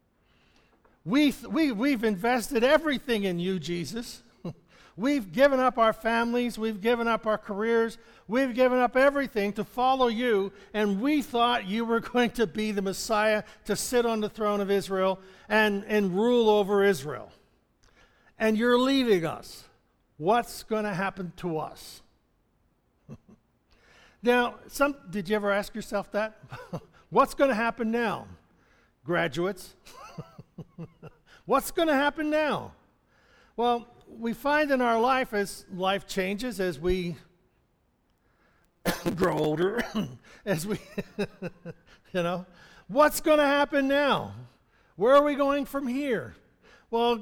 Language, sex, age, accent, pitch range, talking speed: English, male, 60-79, American, 195-255 Hz, 135 wpm